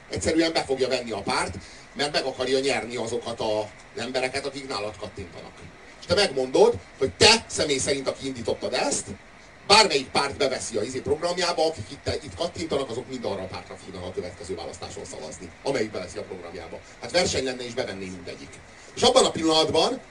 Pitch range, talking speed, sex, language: 125-195 Hz, 180 wpm, male, Hungarian